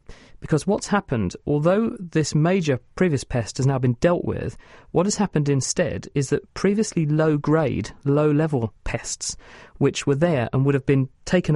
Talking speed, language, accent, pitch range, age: 160 wpm, English, British, 130-155 Hz, 40-59